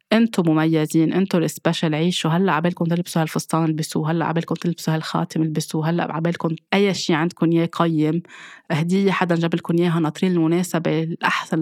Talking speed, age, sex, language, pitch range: 150 wpm, 20-39, female, Arabic, 160-185 Hz